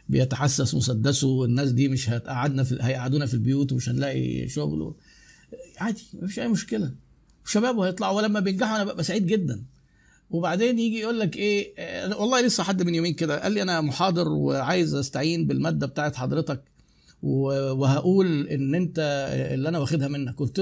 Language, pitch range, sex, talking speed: Arabic, 145-200 Hz, male, 155 wpm